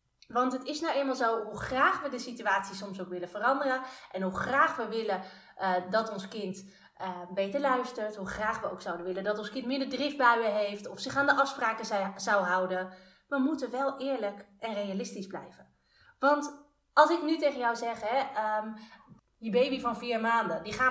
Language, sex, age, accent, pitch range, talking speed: Dutch, female, 30-49, Dutch, 195-255 Hz, 200 wpm